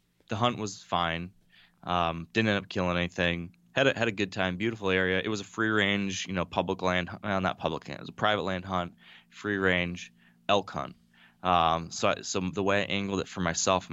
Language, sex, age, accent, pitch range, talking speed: English, male, 20-39, American, 90-100 Hz, 225 wpm